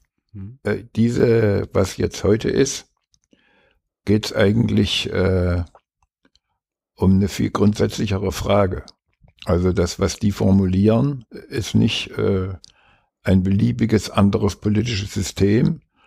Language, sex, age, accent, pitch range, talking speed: German, male, 60-79, German, 95-110 Hz, 95 wpm